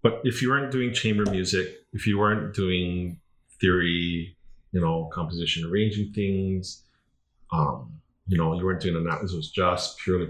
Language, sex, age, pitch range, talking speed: English, male, 30-49, 80-100 Hz, 165 wpm